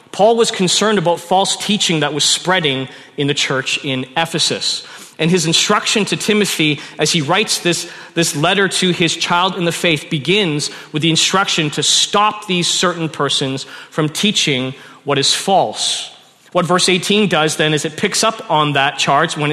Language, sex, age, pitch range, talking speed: English, male, 30-49, 145-180 Hz, 180 wpm